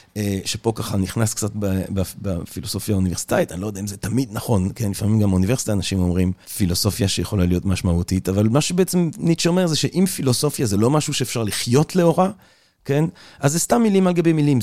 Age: 40-59